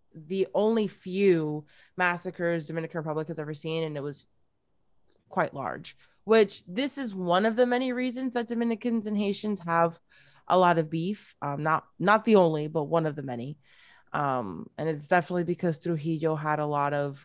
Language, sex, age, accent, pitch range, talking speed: English, female, 20-39, American, 155-210 Hz, 175 wpm